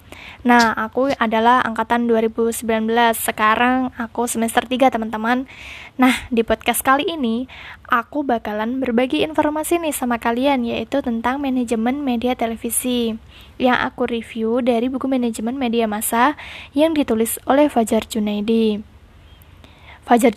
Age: 20-39